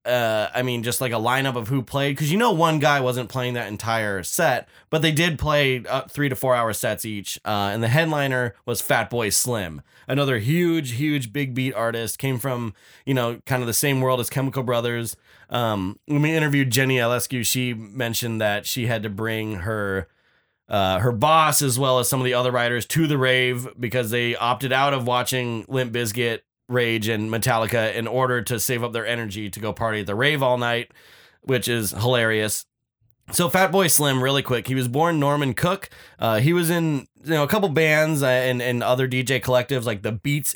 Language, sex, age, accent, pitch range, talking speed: English, male, 20-39, American, 115-140 Hz, 205 wpm